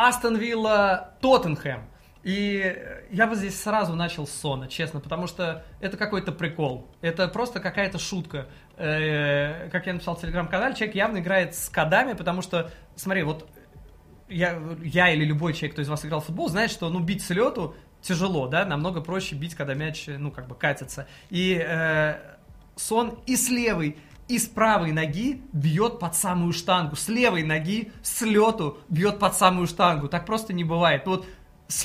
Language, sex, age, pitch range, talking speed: Russian, male, 20-39, 155-200 Hz, 175 wpm